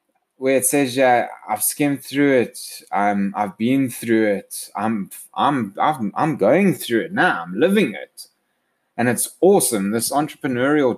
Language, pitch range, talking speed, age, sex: English, 100-125 Hz, 160 wpm, 20-39, male